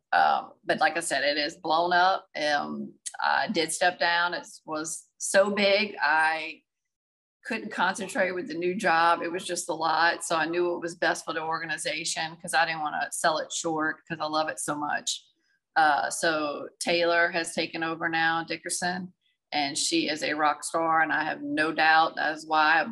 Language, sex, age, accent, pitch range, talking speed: English, female, 40-59, American, 160-185 Hz, 195 wpm